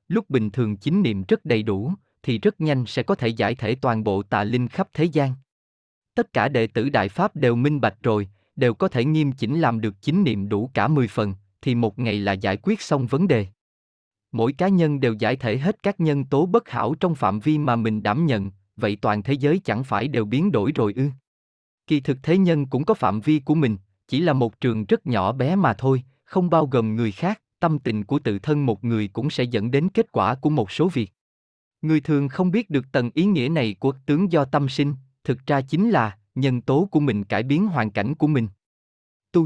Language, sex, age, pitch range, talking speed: Vietnamese, male, 20-39, 110-155 Hz, 235 wpm